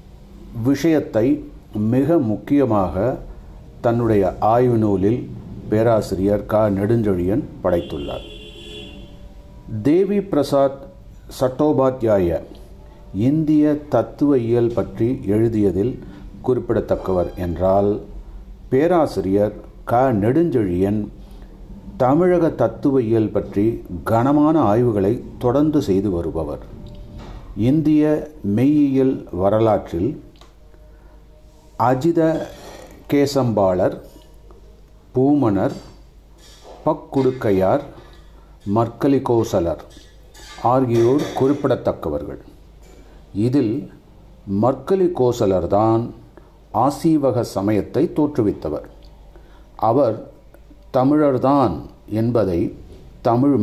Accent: native